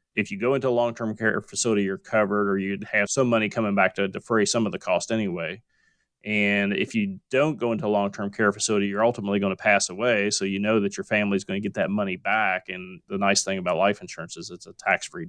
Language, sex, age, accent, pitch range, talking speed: English, male, 30-49, American, 105-120 Hz, 260 wpm